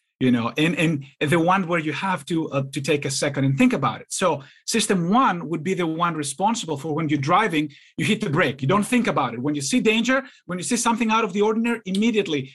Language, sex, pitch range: English, male, 155-220 Hz